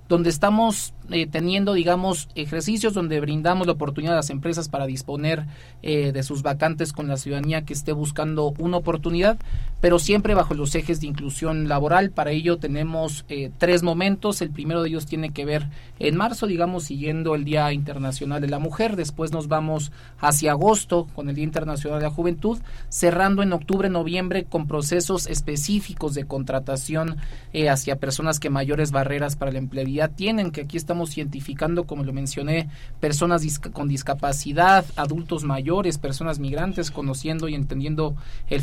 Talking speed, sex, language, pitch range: 165 wpm, male, Spanish, 145-170 Hz